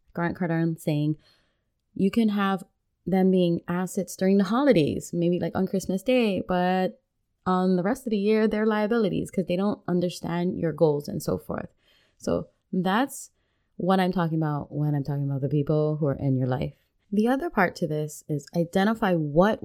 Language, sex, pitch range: English, female, 160-195 Hz